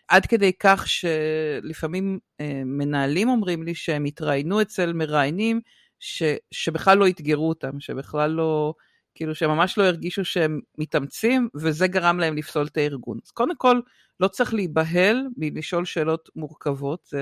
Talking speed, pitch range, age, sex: 140 wpm, 155-220 Hz, 50-69, female